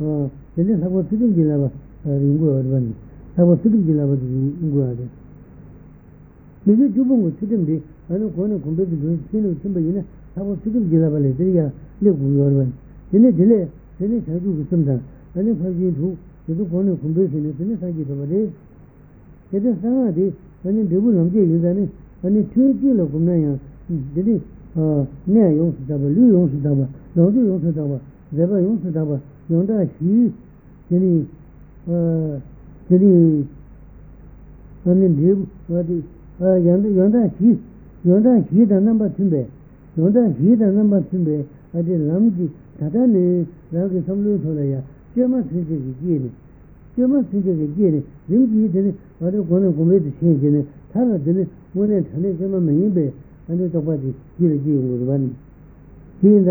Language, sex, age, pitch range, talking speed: Italian, male, 60-79, 150-195 Hz, 125 wpm